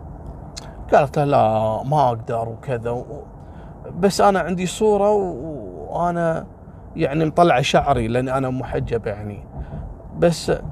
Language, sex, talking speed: Arabic, male, 105 wpm